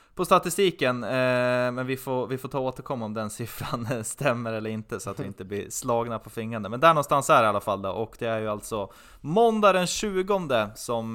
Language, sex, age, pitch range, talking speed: Swedish, male, 20-39, 100-135 Hz, 240 wpm